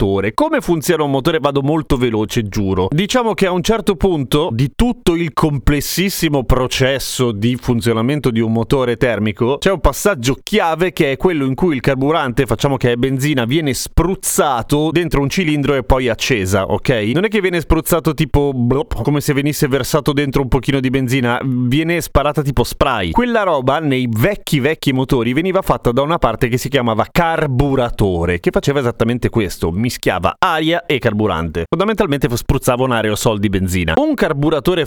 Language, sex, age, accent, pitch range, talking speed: Italian, male, 30-49, native, 120-155 Hz, 170 wpm